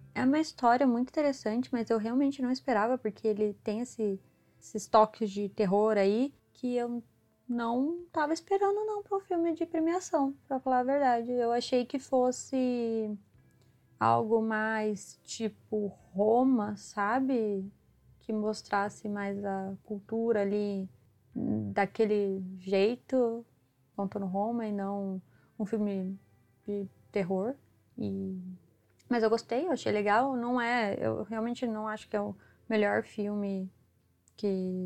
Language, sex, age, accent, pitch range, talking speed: Portuguese, female, 20-39, Brazilian, 200-245 Hz, 135 wpm